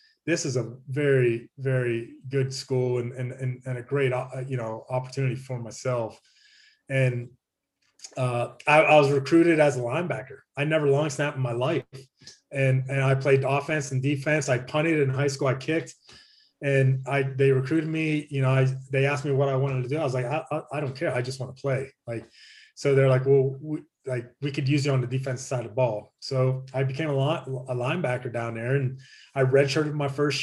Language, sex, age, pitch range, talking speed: English, male, 30-49, 130-145 Hz, 215 wpm